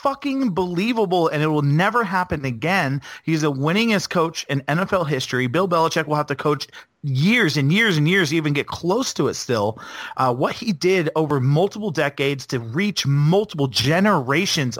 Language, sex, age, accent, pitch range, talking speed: English, male, 40-59, American, 140-195 Hz, 175 wpm